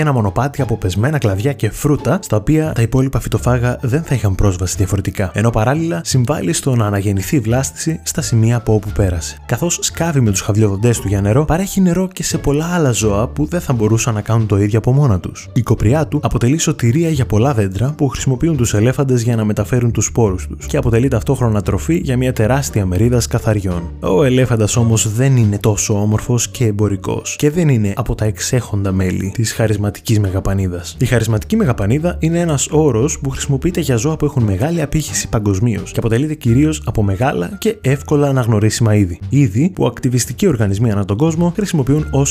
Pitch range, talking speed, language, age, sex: 105-145 Hz, 190 wpm, Greek, 20-39, male